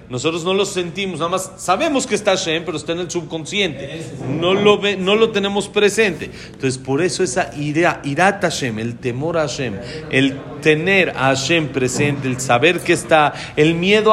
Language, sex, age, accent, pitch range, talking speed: Spanish, male, 40-59, Mexican, 135-190 Hz, 185 wpm